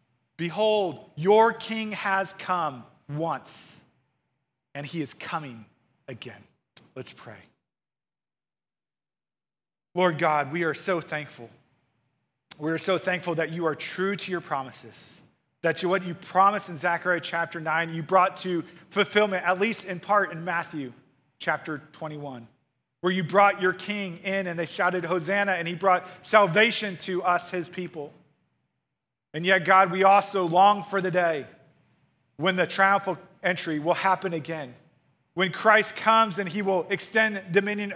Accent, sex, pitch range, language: American, male, 150-195 Hz, English